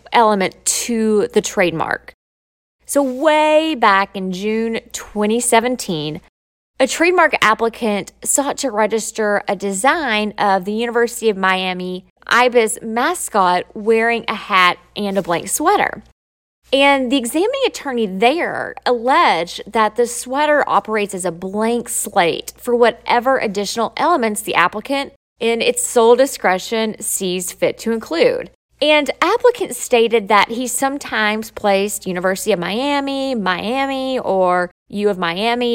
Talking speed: 125 wpm